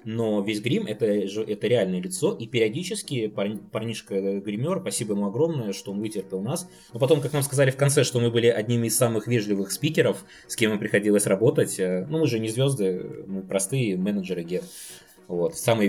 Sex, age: male, 20-39